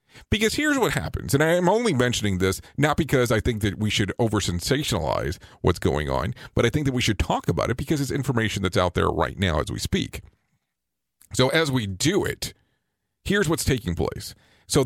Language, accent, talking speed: English, American, 200 wpm